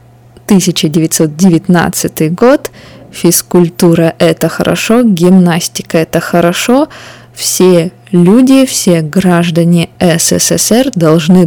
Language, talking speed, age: Russian, 75 wpm, 20-39